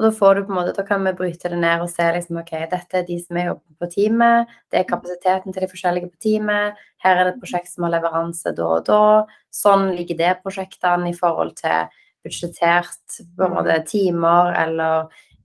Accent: Swedish